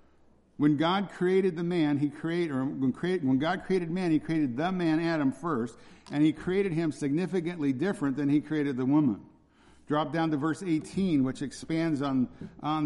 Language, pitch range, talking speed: English, 140-170 Hz, 180 wpm